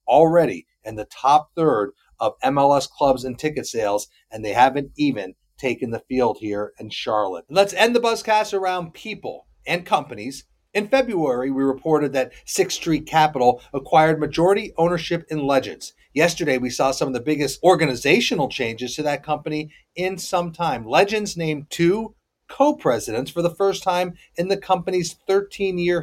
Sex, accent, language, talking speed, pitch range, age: male, American, English, 160 wpm, 140-185 Hz, 30-49